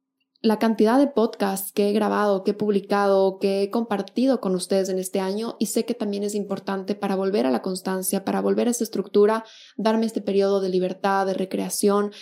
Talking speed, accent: 200 wpm, Mexican